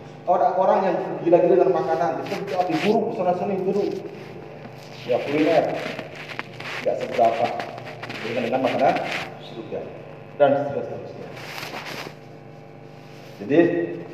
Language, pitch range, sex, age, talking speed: Malay, 145-180 Hz, male, 40-59, 100 wpm